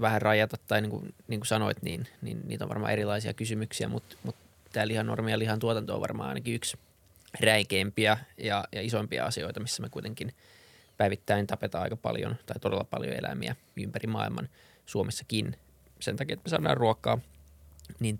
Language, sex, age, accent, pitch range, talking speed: Finnish, male, 20-39, native, 100-120 Hz, 175 wpm